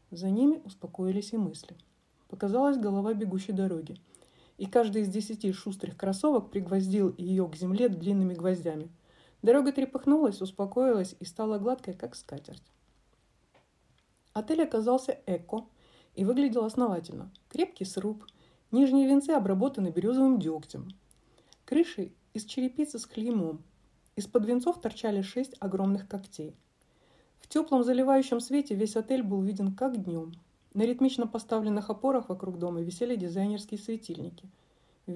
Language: Russian